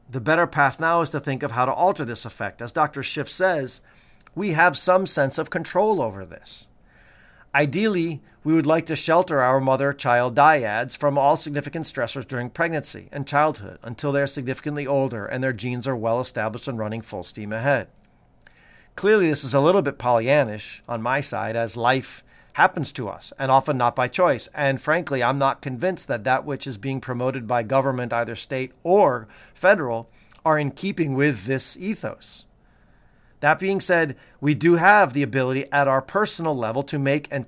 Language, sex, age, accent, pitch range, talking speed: English, male, 40-59, American, 125-150 Hz, 185 wpm